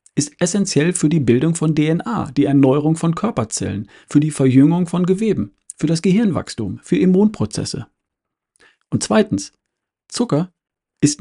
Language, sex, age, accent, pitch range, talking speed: German, male, 50-69, German, 140-185 Hz, 135 wpm